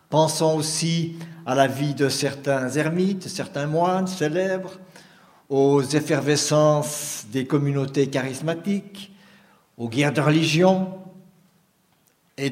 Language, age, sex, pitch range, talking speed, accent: French, 60-79, male, 140-185 Hz, 100 wpm, French